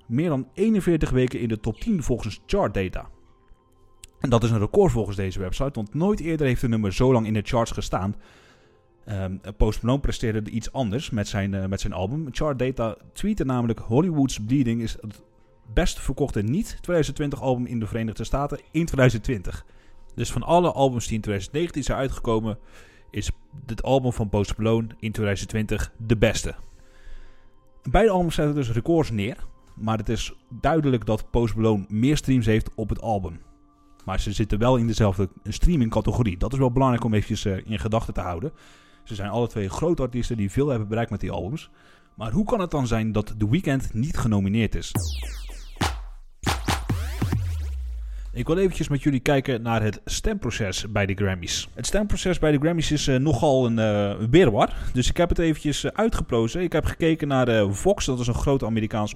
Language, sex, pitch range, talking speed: English, male, 105-135 Hz, 185 wpm